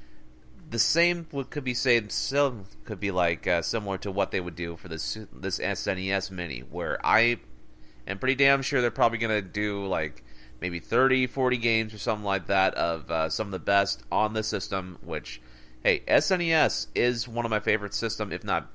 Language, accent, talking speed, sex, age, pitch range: English, American, 190 wpm, male, 30-49, 90-115 Hz